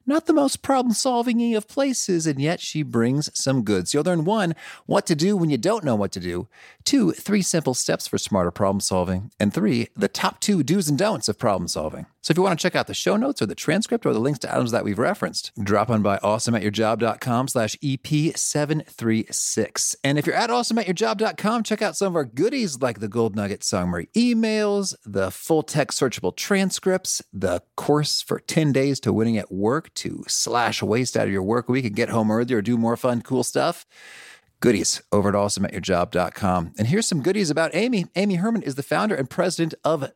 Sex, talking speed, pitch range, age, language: male, 205 wpm, 110-180 Hz, 40-59, English